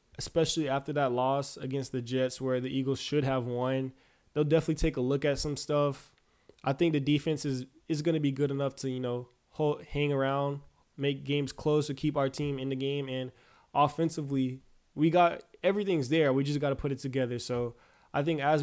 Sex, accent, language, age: male, American, English, 20-39